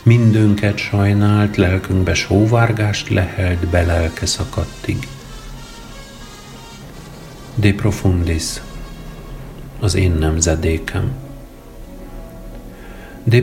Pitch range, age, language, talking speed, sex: 90-110 Hz, 50-69, Hungarian, 60 wpm, male